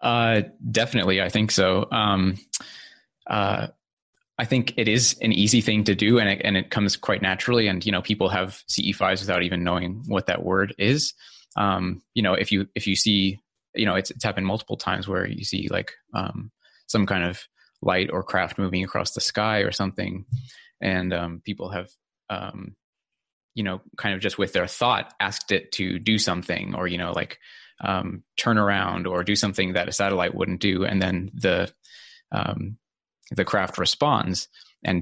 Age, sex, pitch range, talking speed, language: 20-39, male, 95-105 Hz, 185 wpm, English